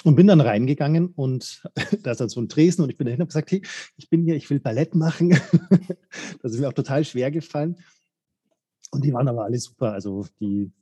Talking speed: 230 wpm